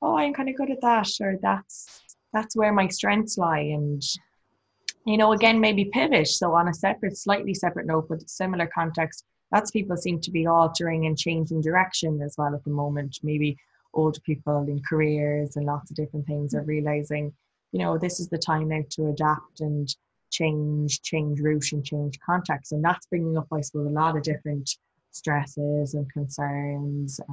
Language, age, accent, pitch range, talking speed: English, 20-39, Irish, 150-175 Hz, 190 wpm